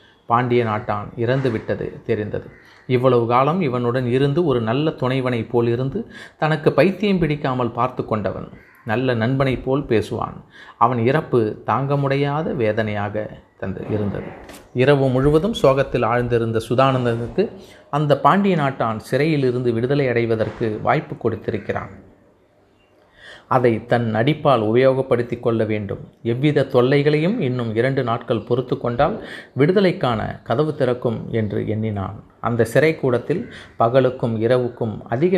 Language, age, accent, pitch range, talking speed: Tamil, 30-49, native, 115-145 Hz, 115 wpm